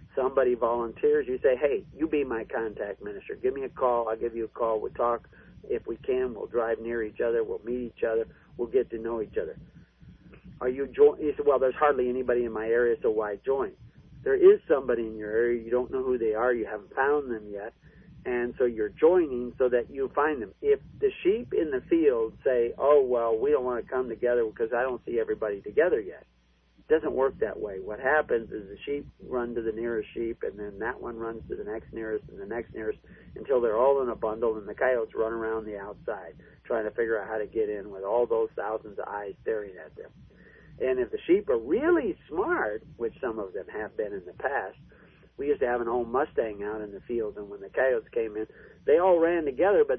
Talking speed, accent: 235 wpm, American